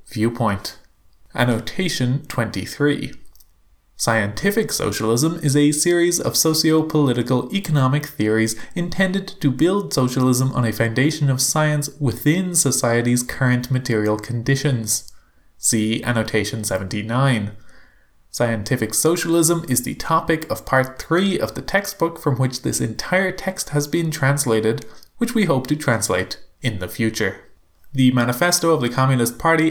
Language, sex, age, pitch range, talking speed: English, male, 20-39, 115-160 Hz, 125 wpm